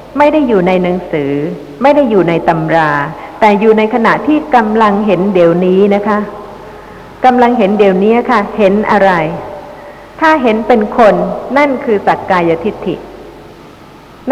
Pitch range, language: 175-225 Hz, Thai